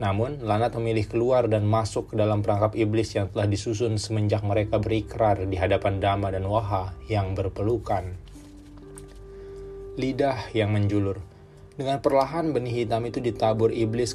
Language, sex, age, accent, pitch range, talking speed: Indonesian, male, 20-39, native, 100-115 Hz, 140 wpm